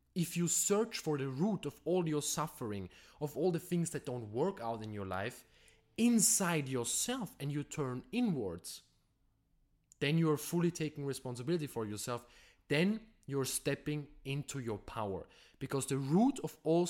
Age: 20-39